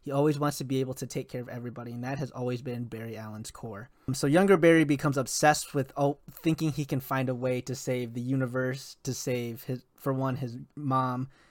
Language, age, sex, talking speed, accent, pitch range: English, 20-39, male, 215 wpm, American, 120-140 Hz